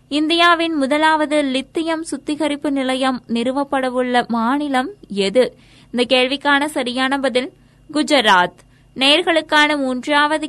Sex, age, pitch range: female, 20-39, 245-300 Hz